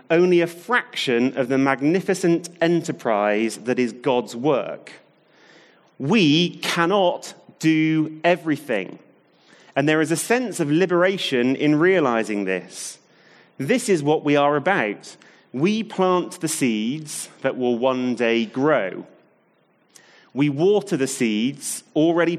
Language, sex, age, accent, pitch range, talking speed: English, male, 30-49, British, 125-170 Hz, 120 wpm